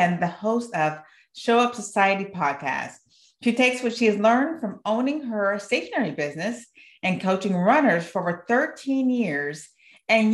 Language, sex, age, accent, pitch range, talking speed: English, female, 30-49, American, 190-245 Hz, 155 wpm